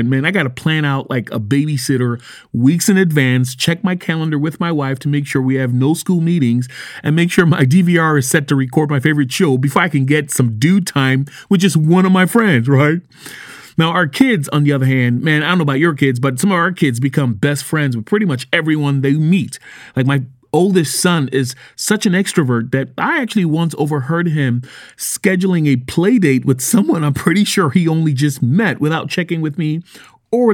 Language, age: English, 30-49